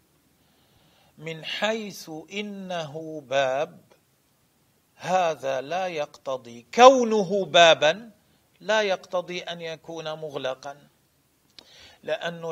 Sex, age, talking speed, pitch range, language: male, 40-59, 70 wpm, 170-230 Hz, Arabic